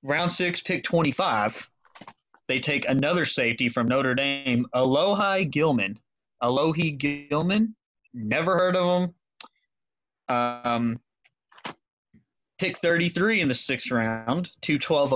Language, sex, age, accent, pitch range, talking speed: English, male, 20-39, American, 120-165 Hz, 110 wpm